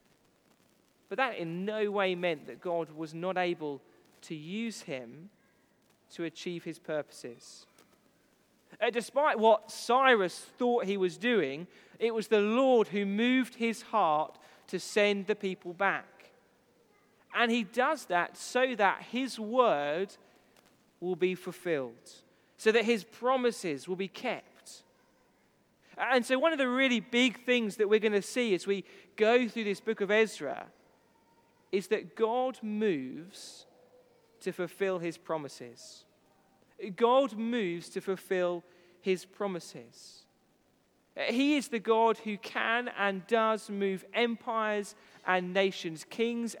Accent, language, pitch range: British, English, 180-230 Hz